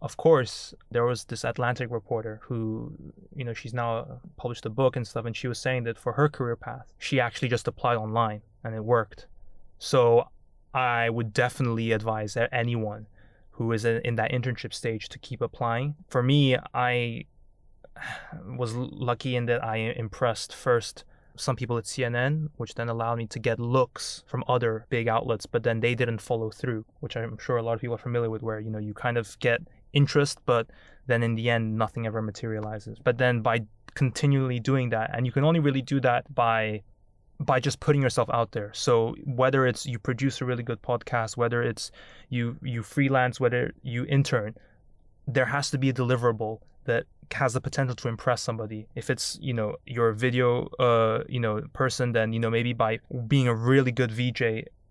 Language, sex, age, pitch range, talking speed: English, male, 20-39, 115-130 Hz, 195 wpm